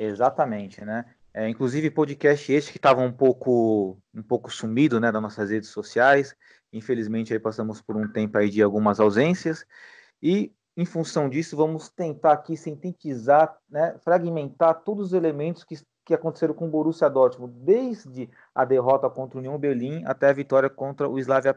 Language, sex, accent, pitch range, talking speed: Portuguese, male, Brazilian, 115-155 Hz, 170 wpm